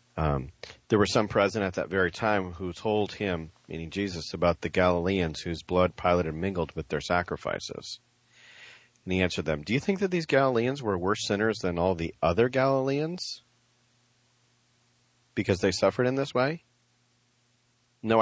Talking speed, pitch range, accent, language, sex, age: 165 wpm, 80-120 Hz, American, English, male, 40-59